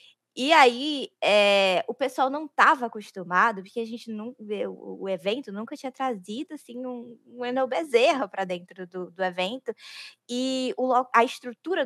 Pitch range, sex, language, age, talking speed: 190-260 Hz, female, Portuguese, 10-29, 160 wpm